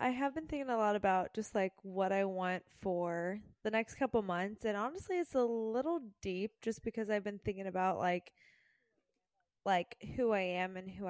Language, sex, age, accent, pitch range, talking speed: English, female, 20-39, American, 185-220 Hz, 195 wpm